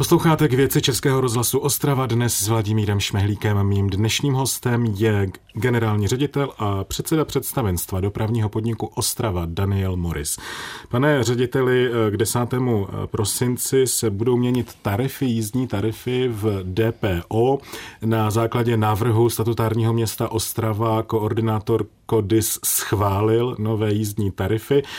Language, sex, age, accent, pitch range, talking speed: Czech, male, 30-49, native, 105-125 Hz, 120 wpm